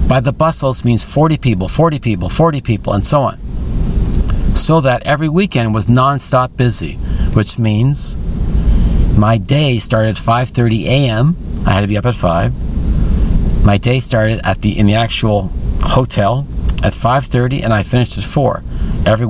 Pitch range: 100-130 Hz